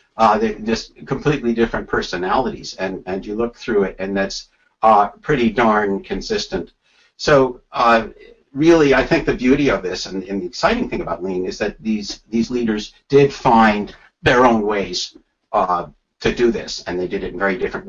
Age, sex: 50-69, male